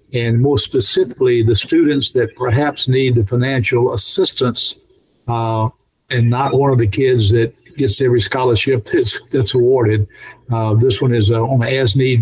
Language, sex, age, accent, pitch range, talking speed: English, male, 60-79, American, 115-130 Hz, 155 wpm